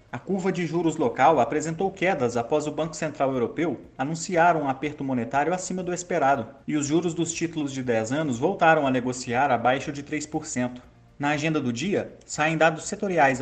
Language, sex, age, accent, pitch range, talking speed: Portuguese, male, 30-49, Brazilian, 135-180 Hz, 180 wpm